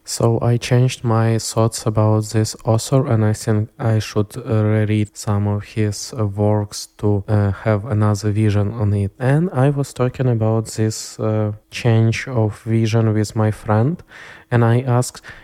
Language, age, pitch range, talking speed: Ukrainian, 20-39, 100-115 Hz, 160 wpm